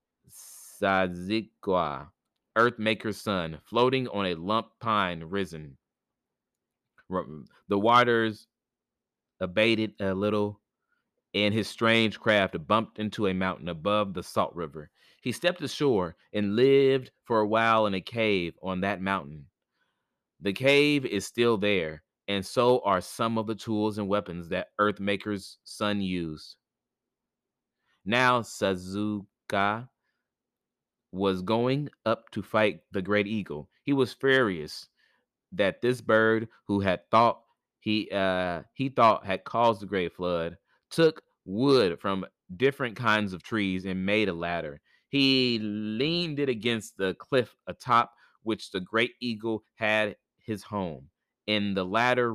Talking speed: 130 wpm